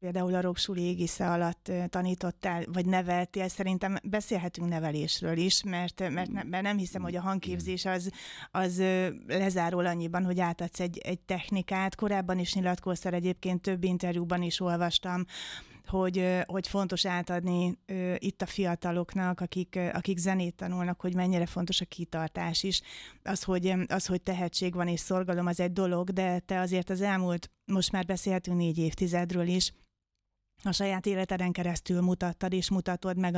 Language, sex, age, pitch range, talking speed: Hungarian, female, 30-49, 175-185 Hz, 155 wpm